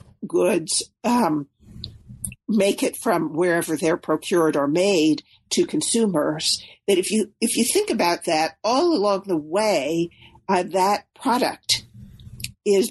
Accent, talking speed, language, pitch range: American, 130 wpm, English, 170-280 Hz